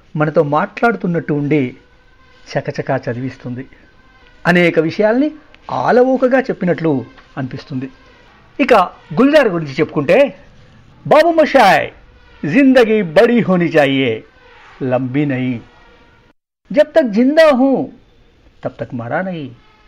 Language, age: Telugu, 60-79